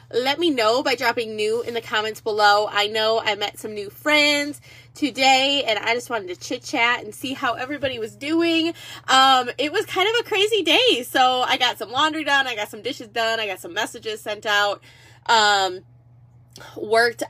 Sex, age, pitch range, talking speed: female, 20-39, 215-290 Hz, 200 wpm